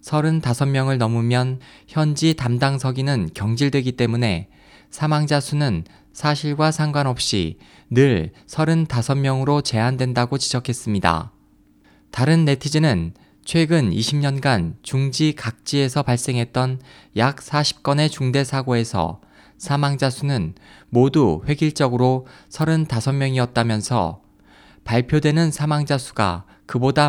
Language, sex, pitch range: Korean, male, 115-145 Hz